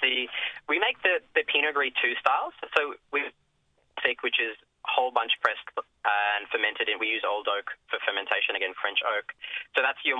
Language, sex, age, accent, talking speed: English, male, 20-39, Australian, 195 wpm